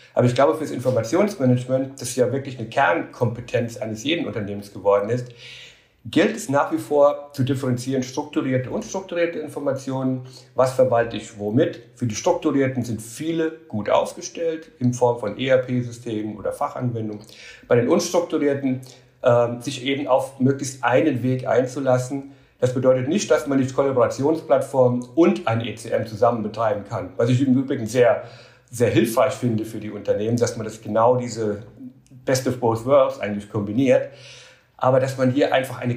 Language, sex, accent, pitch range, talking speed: German, male, German, 120-140 Hz, 160 wpm